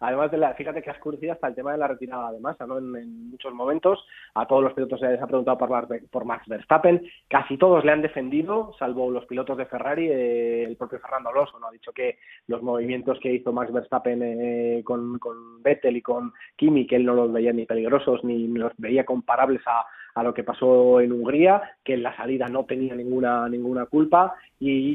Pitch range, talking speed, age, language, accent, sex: 120-145 Hz, 225 wpm, 20-39, Spanish, Spanish, male